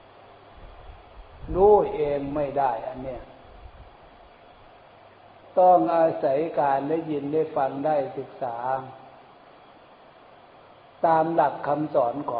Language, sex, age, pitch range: Thai, male, 60-79, 140-170 Hz